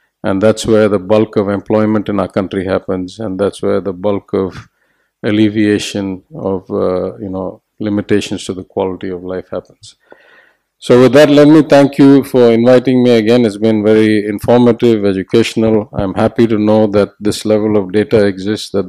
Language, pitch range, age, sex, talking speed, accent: English, 95-110 Hz, 50-69, male, 180 wpm, Indian